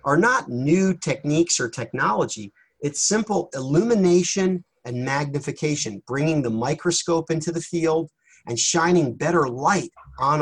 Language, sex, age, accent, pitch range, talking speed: English, male, 40-59, American, 125-165 Hz, 125 wpm